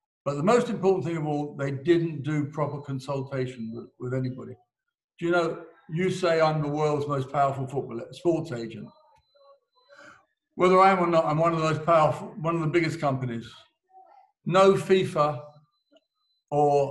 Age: 50-69